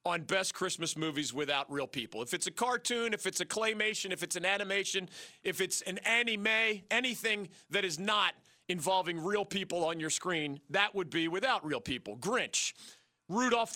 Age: 40-59